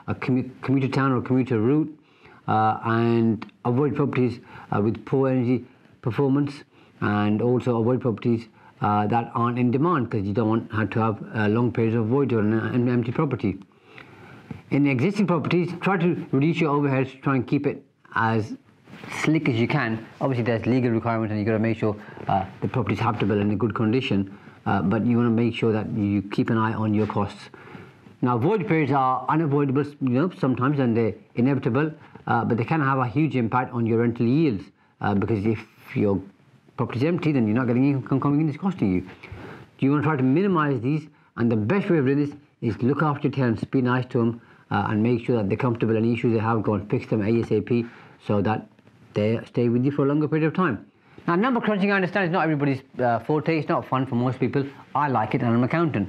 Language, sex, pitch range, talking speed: English, male, 115-145 Hz, 220 wpm